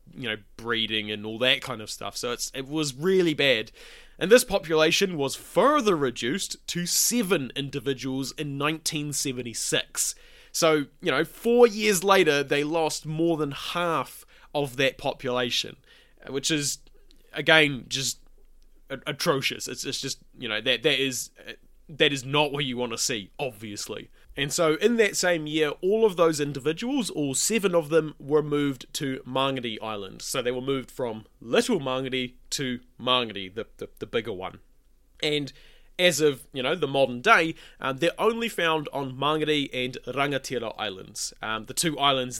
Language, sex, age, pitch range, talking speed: English, male, 20-39, 120-155 Hz, 165 wpm